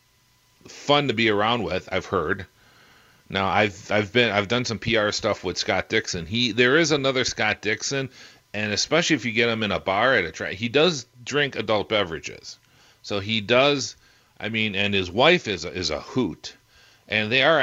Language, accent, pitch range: English, American, 100-120 Hz